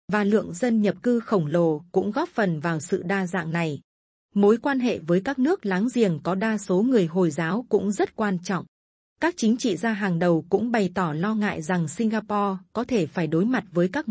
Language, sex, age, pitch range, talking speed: Vietnamese, female, 20-39, 185-230 Hz, 225 wpm